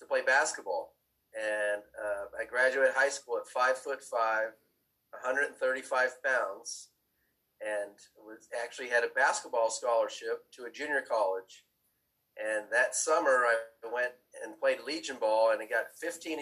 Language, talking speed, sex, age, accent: English, 145 wpm, male, 30-49, American